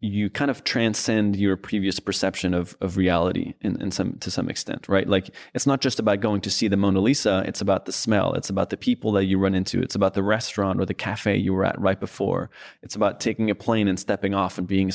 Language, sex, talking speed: English, male, 250 wpm